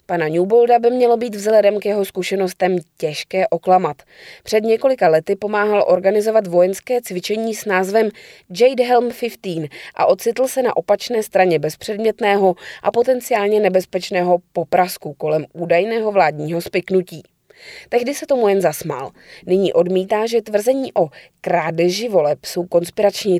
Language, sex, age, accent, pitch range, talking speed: Czech, female, 20-39, native, 170-220 Hz, 135 wpm